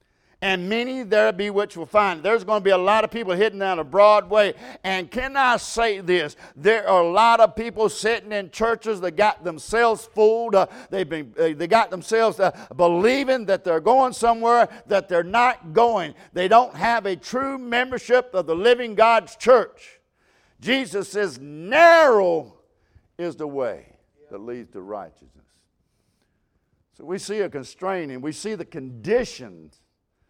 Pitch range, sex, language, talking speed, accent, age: 160-225 Hz, male, English, 165 wpm, American, 60-79